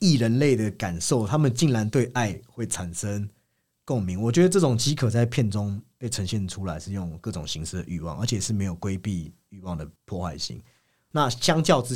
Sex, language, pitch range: male, Chinese, 85-120 Hz